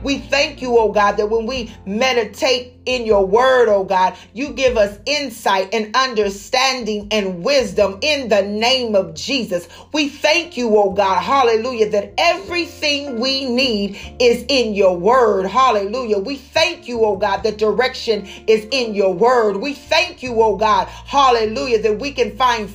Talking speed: 165 wpm